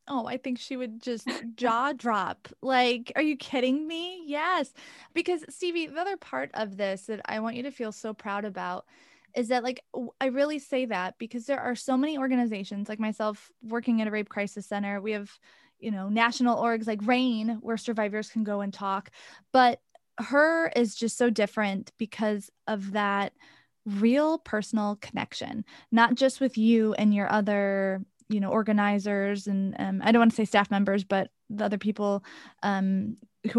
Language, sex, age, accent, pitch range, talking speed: English, female, 20-39, American, 210-255 Hz, 180 wpm